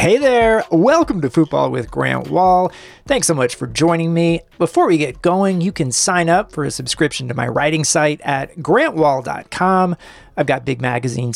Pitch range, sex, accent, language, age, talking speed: 130-175 Hz, male, American, English, 40-59, 185 wpm